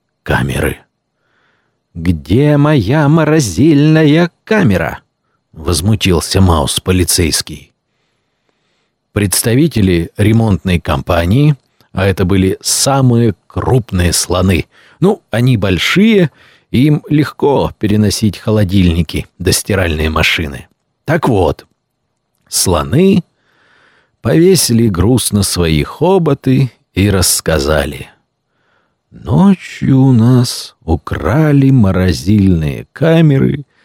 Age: 50-69